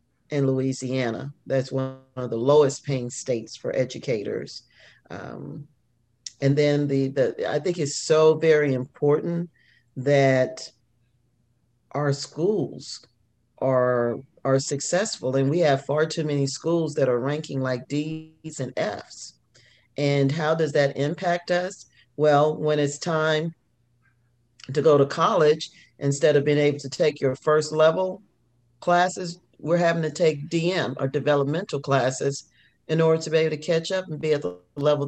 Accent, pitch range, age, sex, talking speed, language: American, 135-160 Hz, 40-59, male, 150 wpm, English